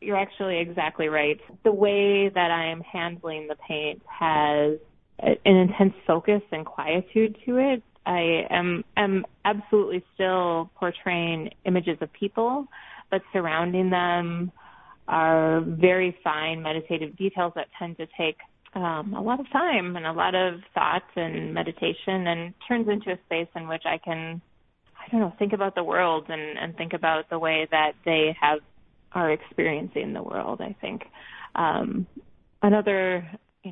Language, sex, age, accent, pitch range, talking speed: English, female, 20-39, American, 160-200 Hz, 155 wpm